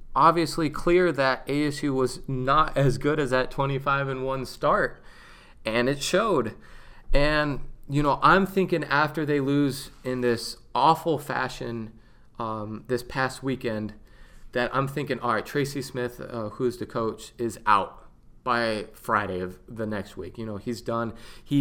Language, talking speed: English, 160 wpm